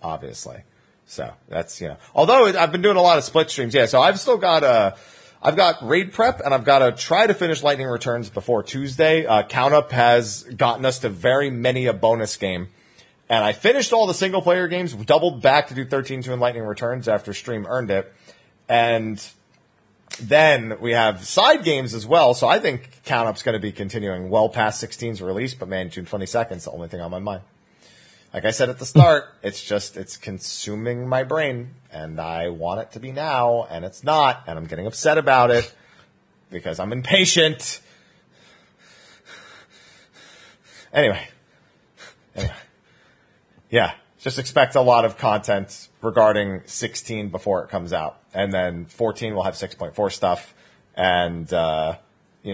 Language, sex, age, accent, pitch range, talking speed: English, male, 40-59, American, 95-130 Hz, 180 wpm